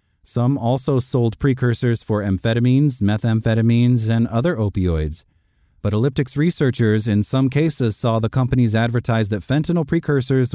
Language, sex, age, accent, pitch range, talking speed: English, male, 30-49, American, 100-125 Hz, 130 wpm